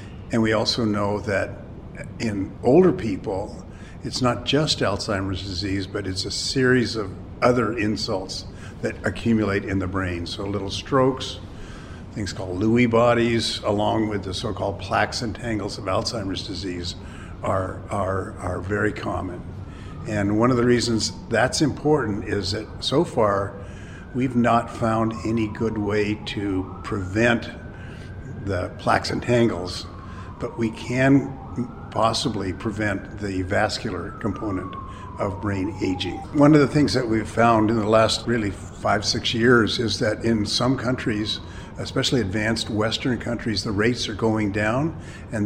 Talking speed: 145 wpm